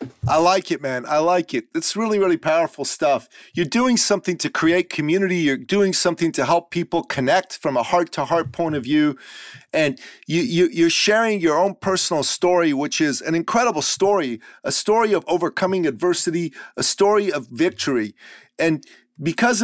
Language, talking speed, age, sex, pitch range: English, 165 wpm, 40-59, male, 160-195 Hz